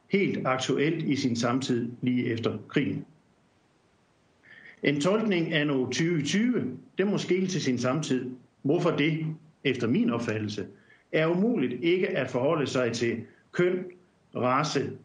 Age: 60-79